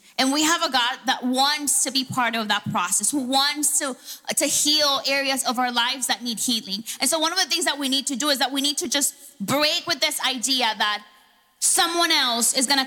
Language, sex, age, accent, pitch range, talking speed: English, female, 20-39, American, 250-300 Hz, 240 wpm